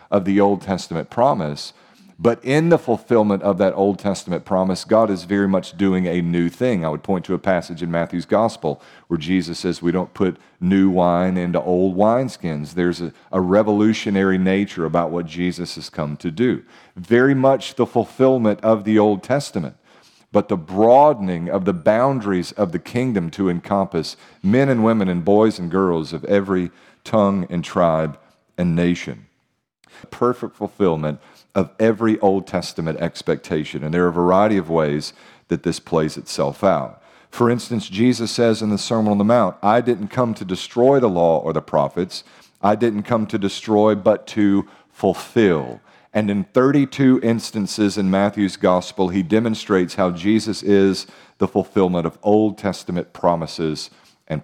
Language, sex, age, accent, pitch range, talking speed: English, male, 40-59, American, 90-110 Hz, 170 wpm